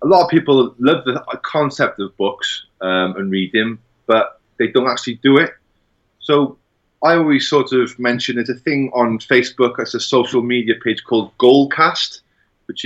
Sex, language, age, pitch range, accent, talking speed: male, English, 30-49, 95-120 Hz, British, 175 wpm